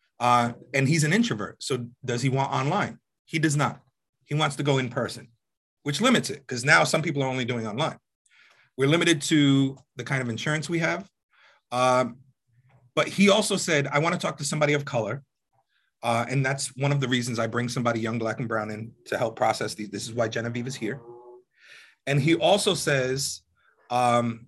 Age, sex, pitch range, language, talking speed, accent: 30-49, male, 125-165 Hz, English, 200 wpm, American